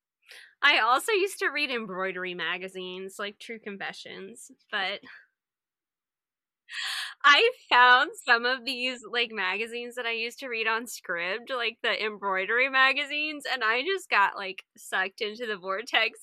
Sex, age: female, 20-39